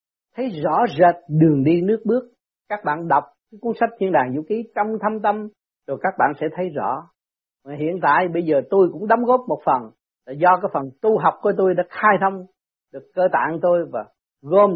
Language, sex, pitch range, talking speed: Vietnamese, male, 145-205 Hz, 215 wpm